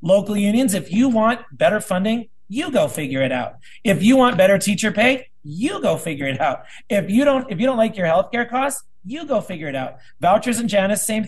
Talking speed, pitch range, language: 225 wpm, 155-220 Hz, English